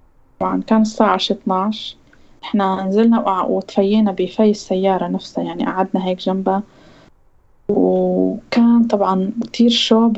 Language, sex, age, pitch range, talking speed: Arabic, female, 20-39, 190-225 Hz, 105 wpm